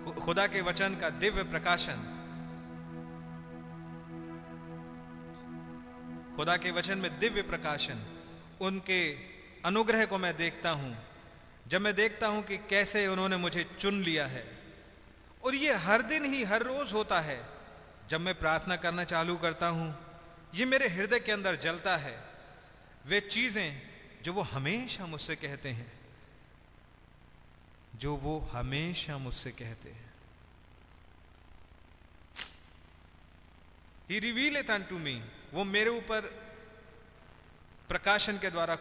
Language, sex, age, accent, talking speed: Hindi, male, 40-59, native, 115 wpm